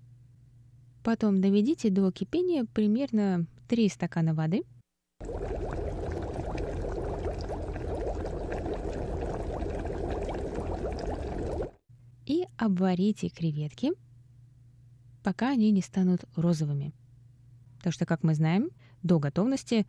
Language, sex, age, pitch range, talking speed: Russian, female, 20-39, 145-190 Hz, 70 wpm